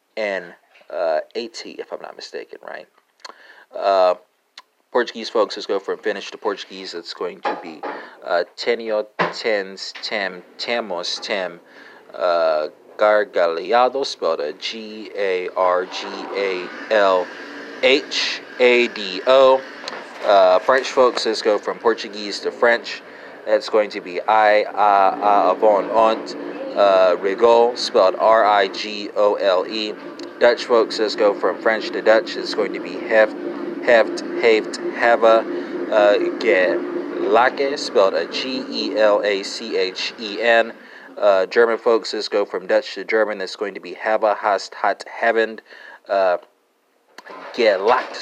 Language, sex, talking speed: English, male, 125 wpm